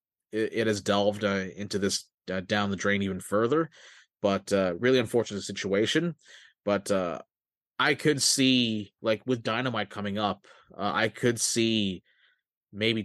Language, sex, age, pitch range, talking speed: English, male, 20-39, 100-115 Hz, 145 wpm